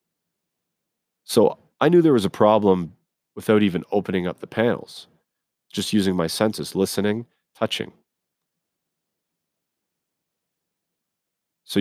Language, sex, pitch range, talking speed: English, male, 95-110 Hz, 100 wpm